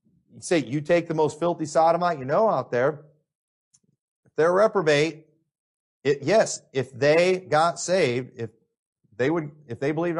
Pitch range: 130-180 Hz